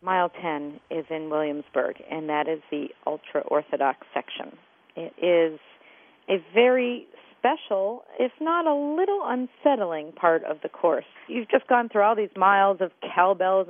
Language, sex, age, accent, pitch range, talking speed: English, female, 40-59, American, 165-235 Hz, 150 wpm